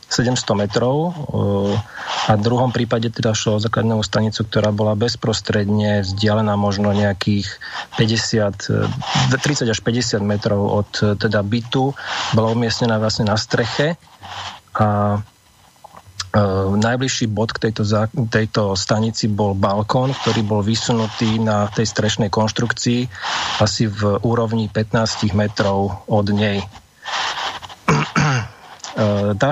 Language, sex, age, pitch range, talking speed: Slovak, male, 40-59, 105-120 Hz, 110 wpm